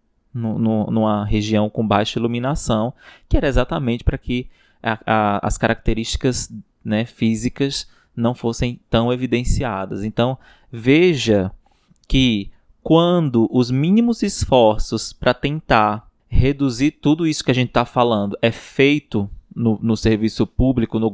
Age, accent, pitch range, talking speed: 20-39, Brazilian, 110-140 Hz, 115 wpm